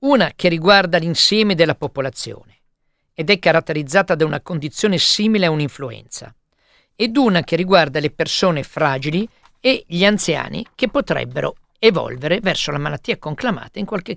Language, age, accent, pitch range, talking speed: Italian, 50-69, native, 150-205 Hz, 145 wpm